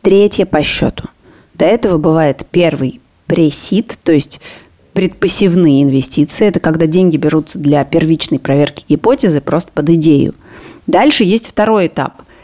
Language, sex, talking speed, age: Russian, female, 130 wpm, 30-49